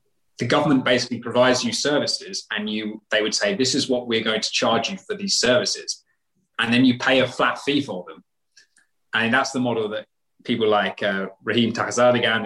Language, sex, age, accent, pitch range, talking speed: English, male, 20-39, British, 110-150 Hz, 195 wpm